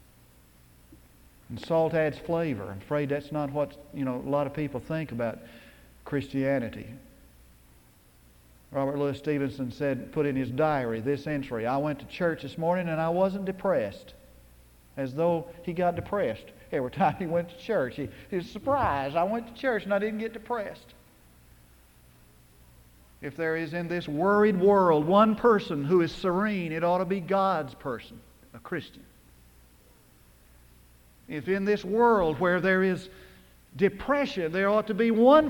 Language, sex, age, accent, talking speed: English, male, 60-79, American, 160 wpm